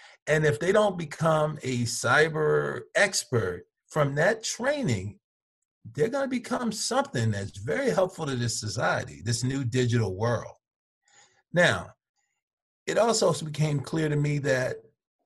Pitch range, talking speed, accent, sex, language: 115-160 Hz, 135 wpm, American, male, English